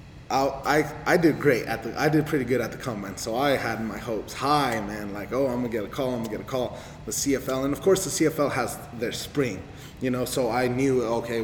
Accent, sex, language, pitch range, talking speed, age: American, male, English, 100-120 Hz, 250 wpm, 20-39